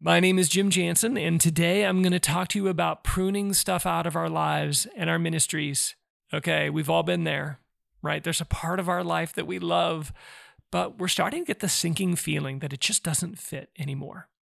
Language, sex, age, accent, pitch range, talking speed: English, male, 40-59, American, 145-185 Hz, 215 wpm